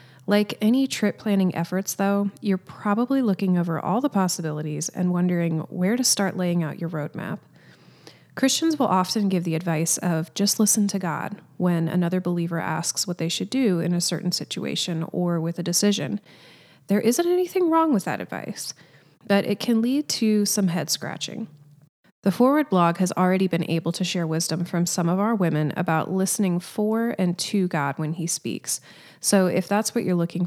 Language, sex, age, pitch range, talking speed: English, female, 30-49, 165-205 Hz, 185 wpm